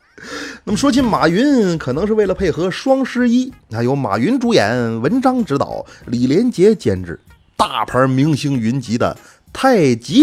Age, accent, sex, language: 30-49, native, male, Chinese